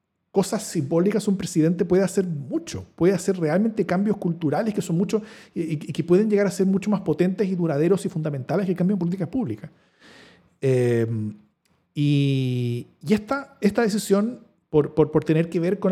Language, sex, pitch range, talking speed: Spanish, male, 145-185 Hz, 180 wpm